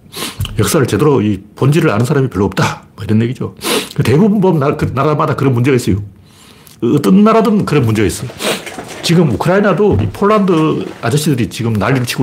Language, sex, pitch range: Korean, male, 110-165 Hz